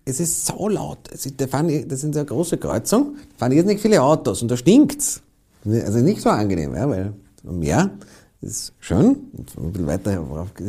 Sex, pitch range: male, 110-160 Hz